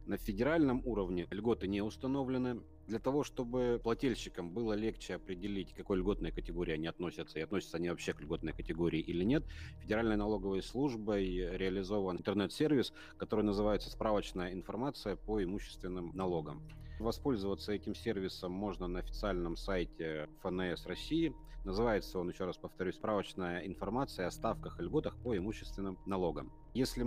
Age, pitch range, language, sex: 30-49, 90-120 Hz, Russian, male